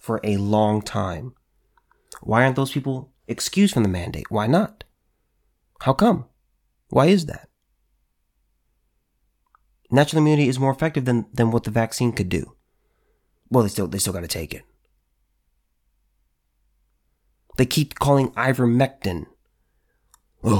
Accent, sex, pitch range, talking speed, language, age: American, male, 100-130 Hz, 130 wpm, English, 30-49